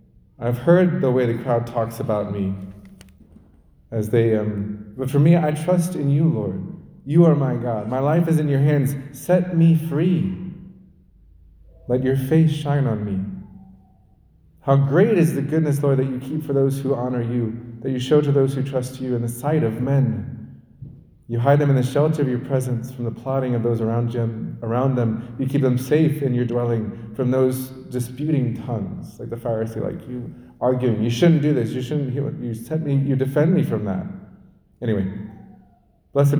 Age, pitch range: 30-49, 110-140 Hz